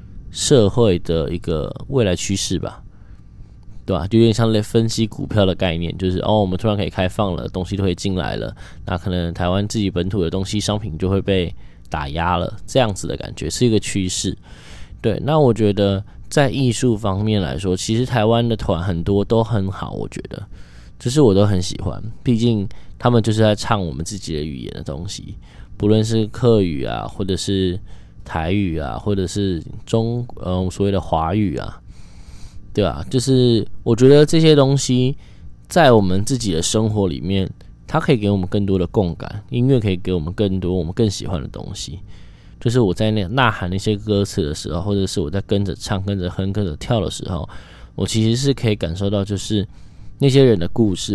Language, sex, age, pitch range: Chinese, male, 10-29, 90-115 Hz